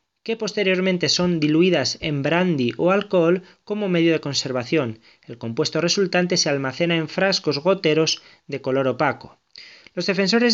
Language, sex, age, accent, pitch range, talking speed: Spanish, male, 20-39, Spanish, 150-190 Hz, 140 wpm